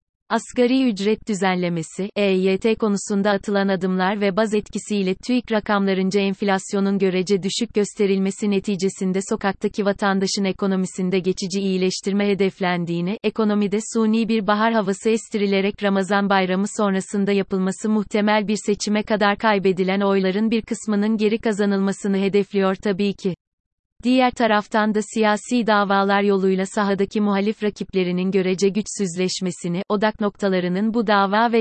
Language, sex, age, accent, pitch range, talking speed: Turkish, female, 30-49, native, 190-215 Hz, 120 wpm